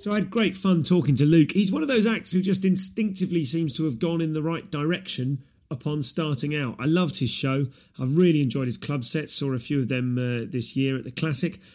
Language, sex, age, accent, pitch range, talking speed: English, male, 30-49, British, 130-180 Hz, 245 wpm